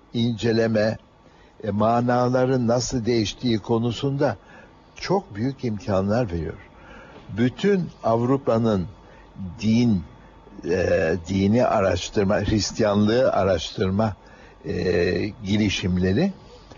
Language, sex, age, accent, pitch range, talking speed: Turkish, male, 60-79, native, 105-135 Hz, 70 wpm